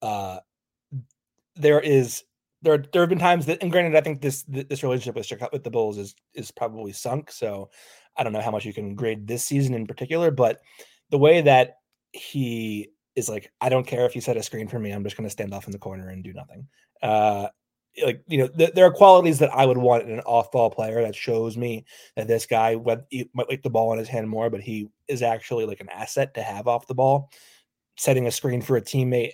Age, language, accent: 20-39, English, American